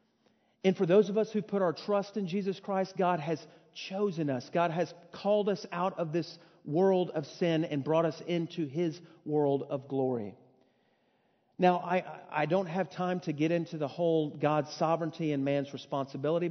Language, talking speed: English, 180 wpm